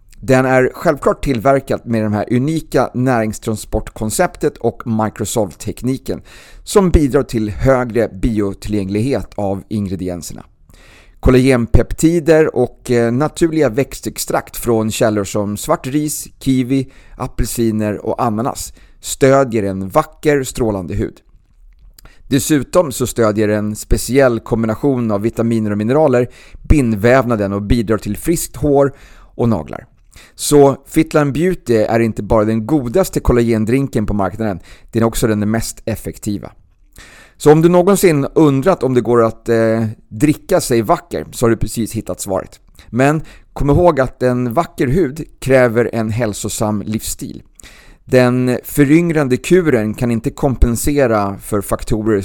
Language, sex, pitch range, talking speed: Swedish, male, 105-135 Hz, 125 wpm